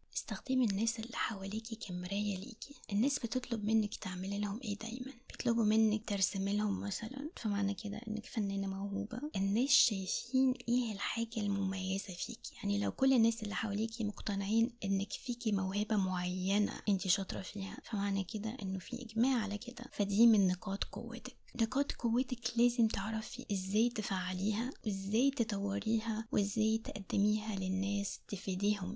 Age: 20-39